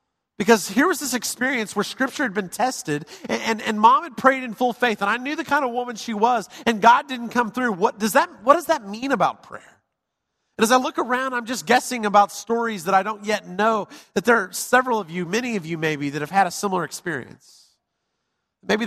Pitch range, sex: 190-245 Hz, male